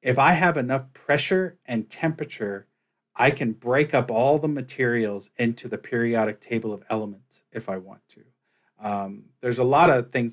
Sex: male